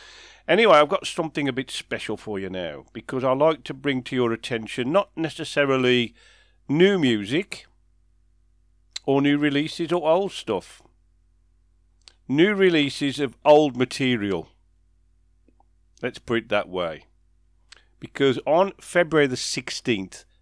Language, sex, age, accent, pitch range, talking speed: English, male, 50-69, British, 90-145 Hz, 125 wpm